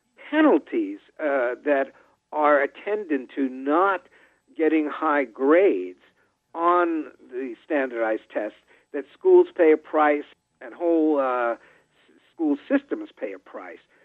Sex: male